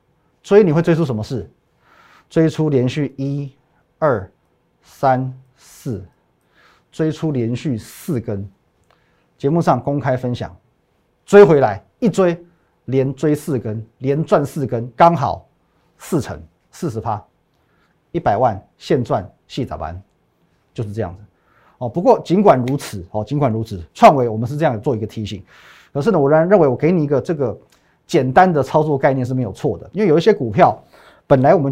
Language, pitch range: Chinese, 115-160 Hz